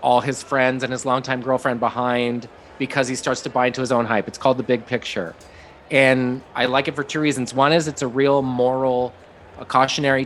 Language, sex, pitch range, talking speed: English, male, 115-135 Hz, 215 wpm